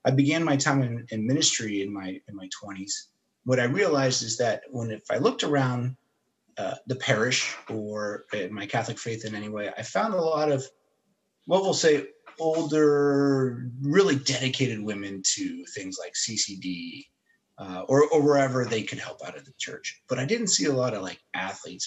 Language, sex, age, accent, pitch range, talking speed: English, male, 30-49, American, 110-140 Hz, 185 wpm